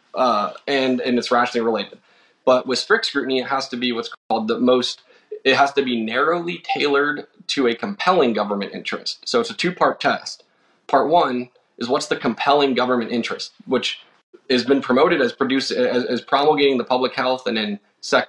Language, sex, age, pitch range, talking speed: English, male, 10-29, 115-140 Hz, 190 wpm